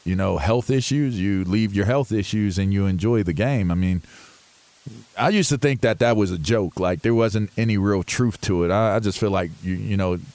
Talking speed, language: 240 wpm, English